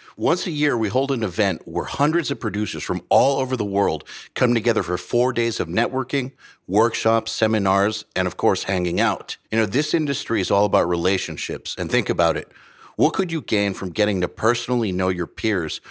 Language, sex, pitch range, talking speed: English, male, 95-125 Hz, 200 wpm